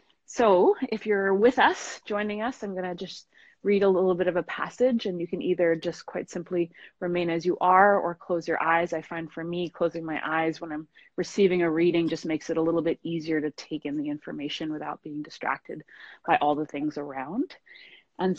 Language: English